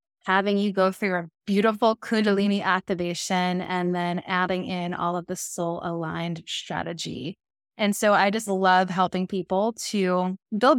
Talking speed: 150 wpm